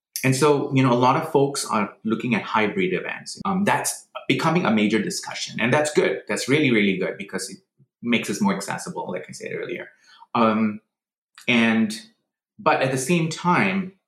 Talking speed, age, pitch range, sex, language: 185 wpm, 30-49, 100-160 Hz, male, English